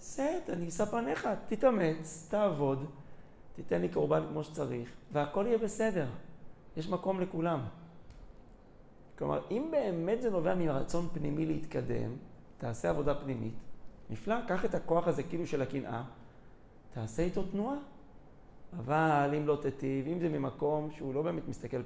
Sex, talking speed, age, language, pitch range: male, 135 wpm, 40-59, Hebrew, 130-185 Hz